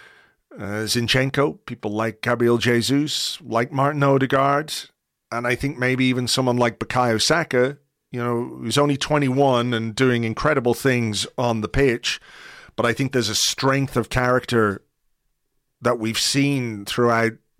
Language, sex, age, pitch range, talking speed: English, male, 40-59, 110-135 Hz, 145 wpm